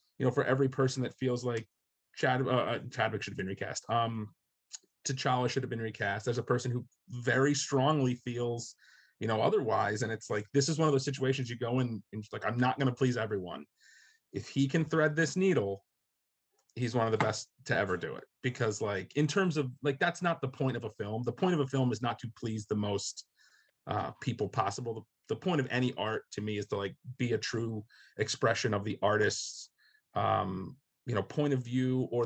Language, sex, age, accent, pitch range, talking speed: English, male, 30-49, American, 110-130 Hz, 220 wpm